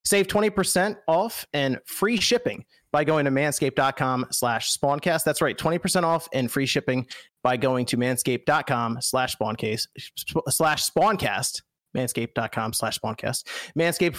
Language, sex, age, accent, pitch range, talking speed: English, male, 30-49, American, 125-175 Hz, 130 wpm